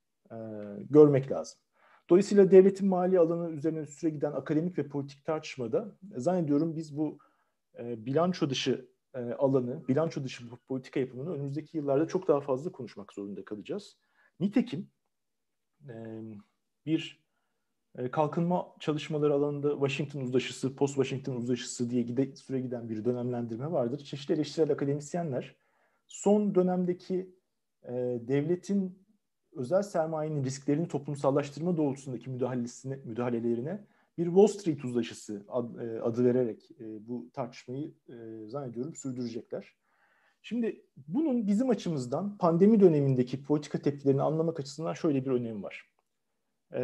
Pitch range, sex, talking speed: 125-165 Hz, male, 105 wpm